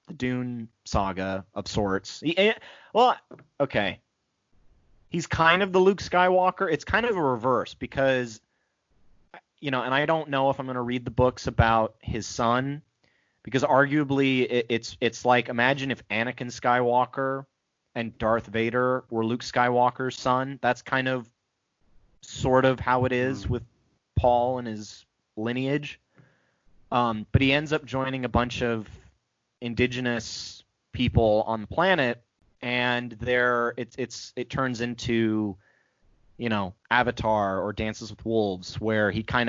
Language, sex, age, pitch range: English, male, 30-49, 110-135 Hz